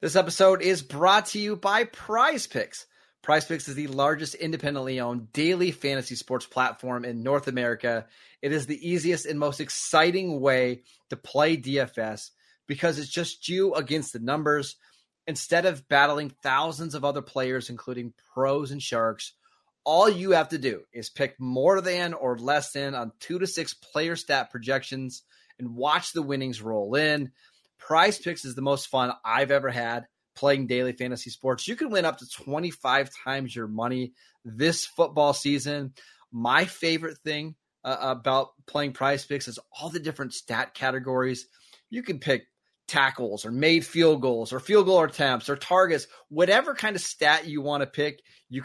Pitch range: 130-165 Hz